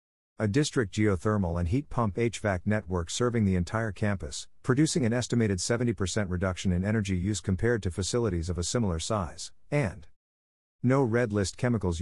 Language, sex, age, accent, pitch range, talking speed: English, male, 50-69, American, 90-115 Hz, 160 wpm